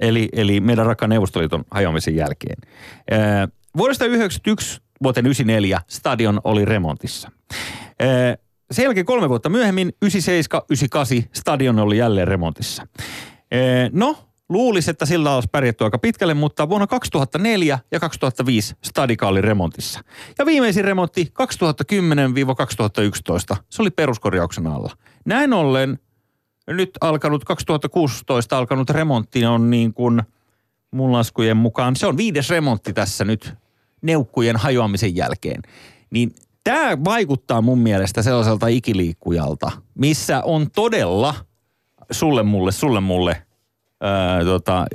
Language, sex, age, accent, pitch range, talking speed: Finnish, male, 30-49, native, 110-160 Hz, 115 wpm